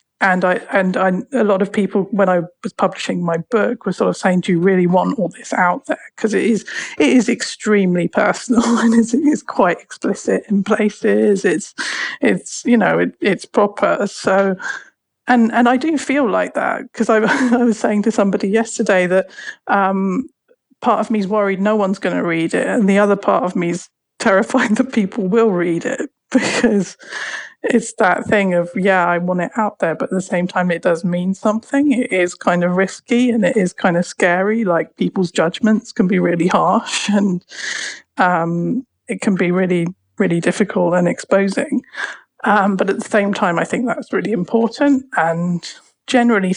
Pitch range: 185-230 Hz